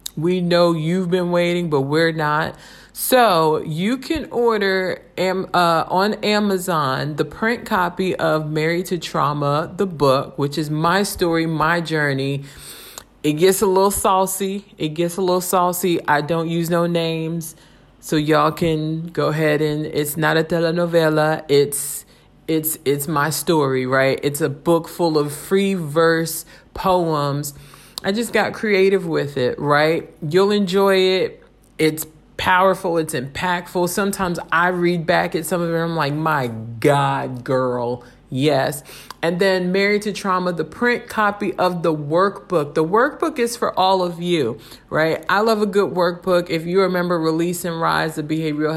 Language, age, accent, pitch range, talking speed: English, 40-59, American, 155-185 Hz, 160 wpm